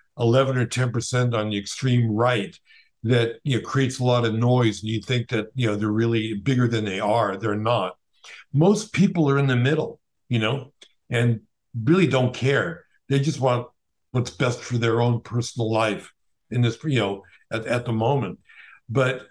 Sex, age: male, 60-79